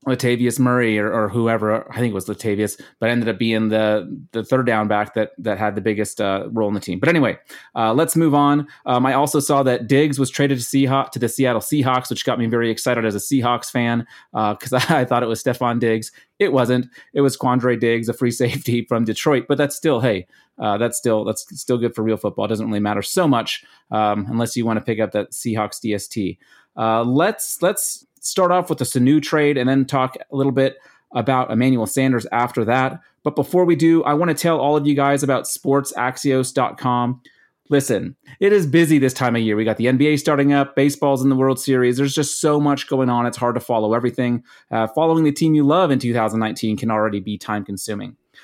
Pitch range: 115-140 Hz